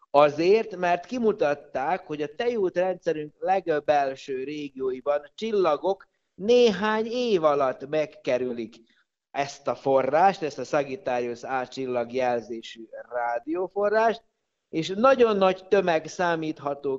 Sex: male